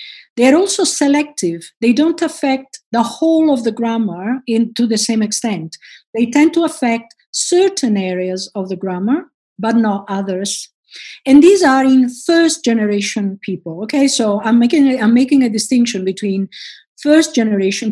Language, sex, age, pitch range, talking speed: German, female, 50-69, 210-285 Hz, 150 wpm